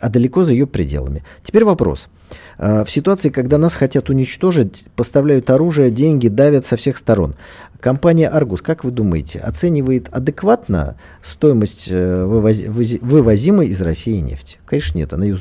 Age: 40-59